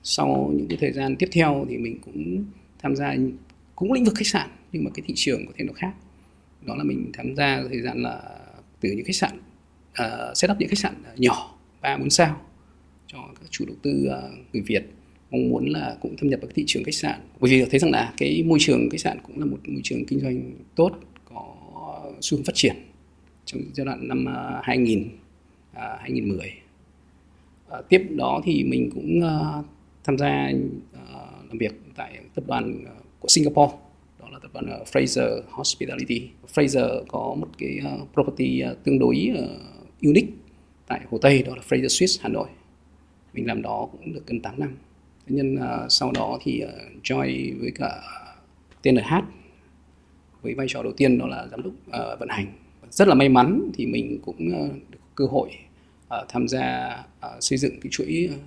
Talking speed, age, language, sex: 200 wpm, 20-39, Vietnamese, male